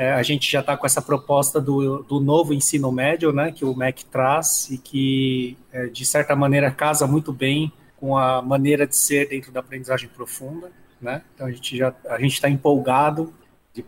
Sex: male